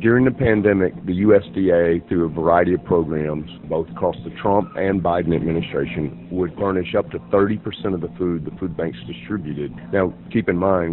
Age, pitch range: 50-69, 85-105 Hz